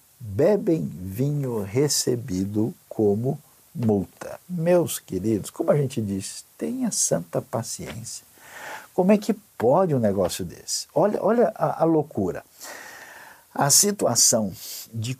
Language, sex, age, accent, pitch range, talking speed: Portuguese, male, 60-79, Brazilian, 100-140 Hz, 115 wpm